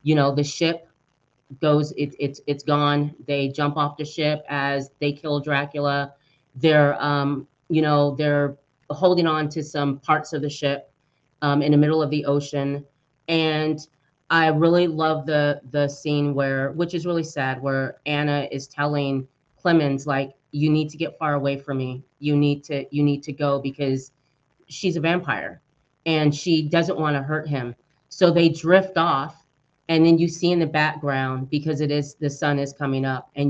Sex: female